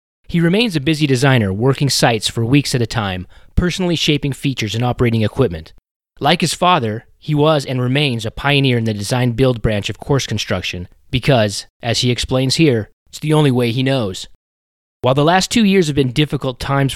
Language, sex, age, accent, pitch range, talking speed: English, male, 30-49, American, 105-140 Hz, 190 wpm